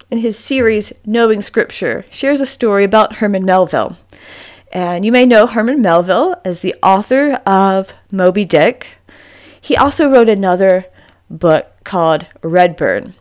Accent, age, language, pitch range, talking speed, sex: American, 30-49, English, 175-230 Hz, 135 wpm, female